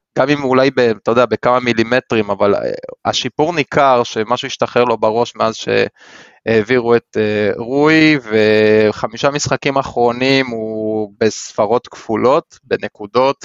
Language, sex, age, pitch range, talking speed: Hebrew, male, 20-39, 110-135 Hz, 115 wpm